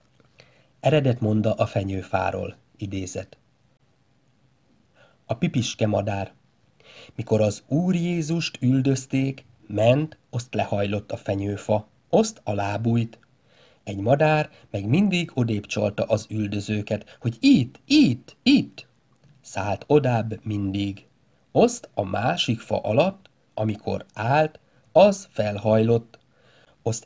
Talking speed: 100 wpm